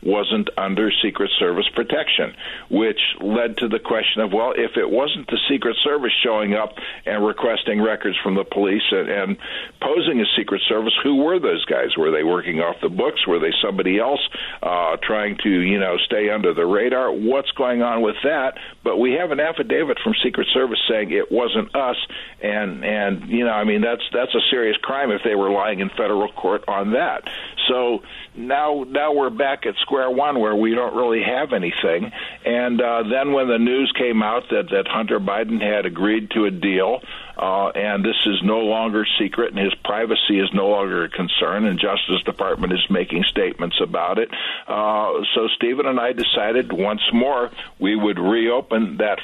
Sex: male